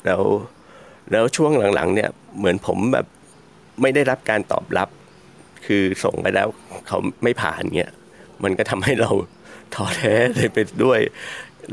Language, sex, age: Thai, male, 30-49